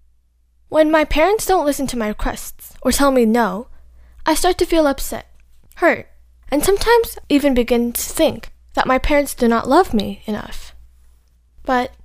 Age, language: 10-29, Korean